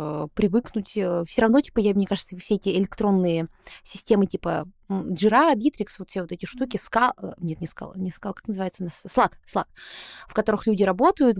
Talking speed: 180 wpm